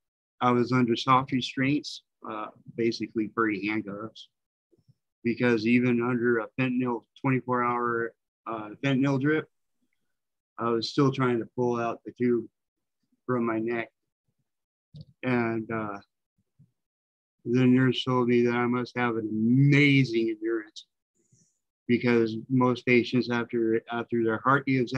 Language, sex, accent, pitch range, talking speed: English, male, American, 115-130 Hz, 125 wpm